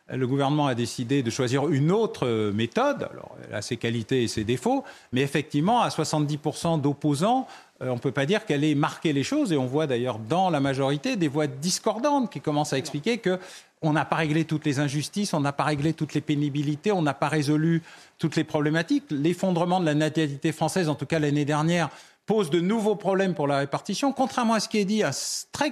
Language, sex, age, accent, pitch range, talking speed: French, male, 40-59, French, 140-195 Hz, 215 wpm